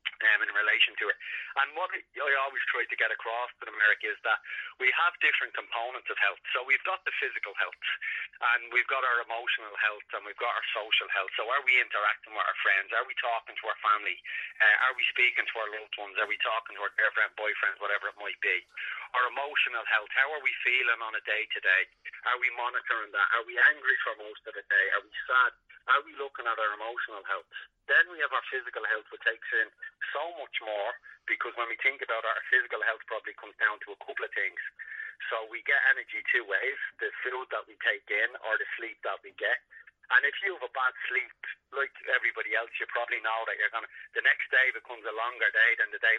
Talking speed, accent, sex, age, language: 230 wpm, Irish, male, 30-49, English